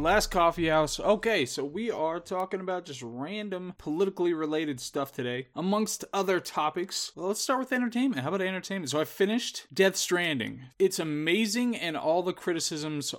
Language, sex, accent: English, male, American